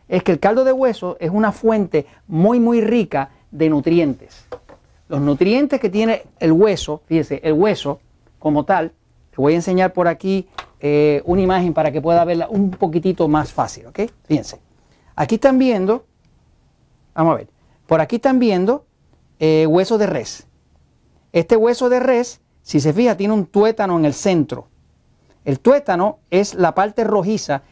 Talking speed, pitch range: 165 wpm, 150-200 Hz